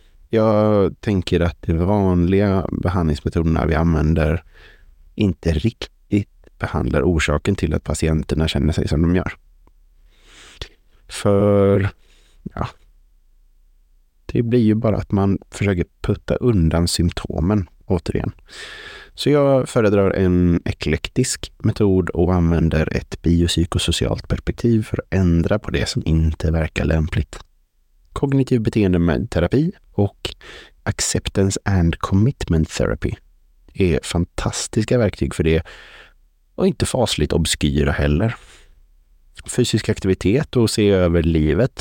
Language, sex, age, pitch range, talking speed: Swedish, male, 30-49, 80-105 Hz, 110 wpm